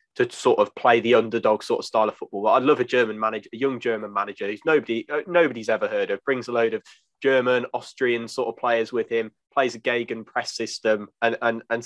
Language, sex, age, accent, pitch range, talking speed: English, male, 20-39, British, 110-130 Hz, 235 wpm